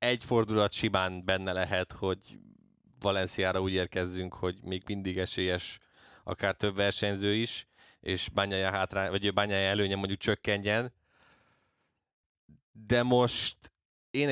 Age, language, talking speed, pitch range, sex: 20-39, Hungarian, 115 wpm, 90-110 Hz, male